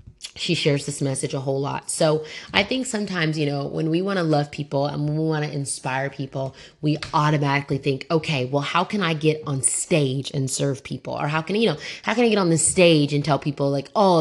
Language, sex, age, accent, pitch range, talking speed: English, female, 20-39, American, 140-160 Hz, 240 wpm